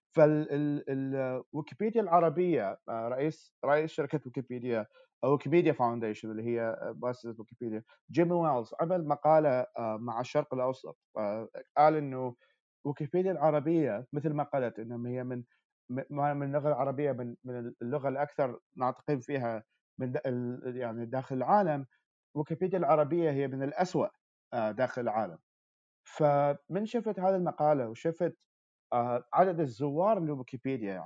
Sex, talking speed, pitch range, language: male, 110 wpm, 125-155 Hz, Arabic